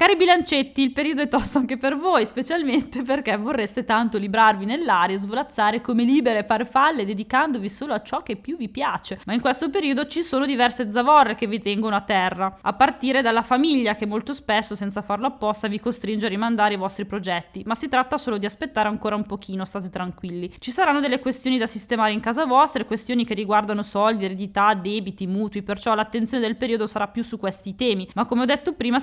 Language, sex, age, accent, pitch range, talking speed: Italian, female, 20-39, native, 205-260 Hz, 205 wpm